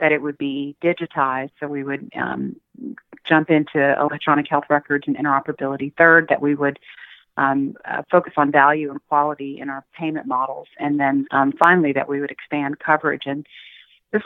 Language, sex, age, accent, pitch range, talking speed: English, female, 40-59, American, 140-155 Hz, 175 wpm